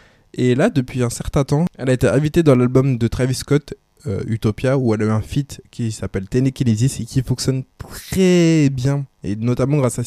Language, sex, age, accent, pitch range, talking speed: French, male, 20-39, French, 115-140 Hz, 210 wpm